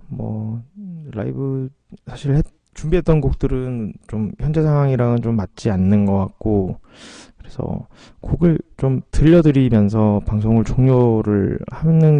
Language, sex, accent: Korean, male, native